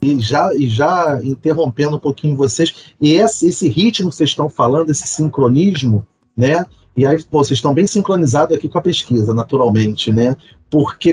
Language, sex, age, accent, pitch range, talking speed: Portuguese, male, 40-59, Brazilian, 135-185 Hz, 160 wpm